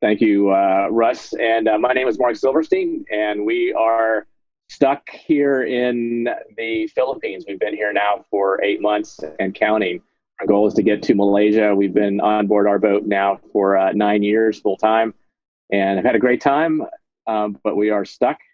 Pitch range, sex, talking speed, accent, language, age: 105-125 Hz, male, 190 wpm, American, English, 30-49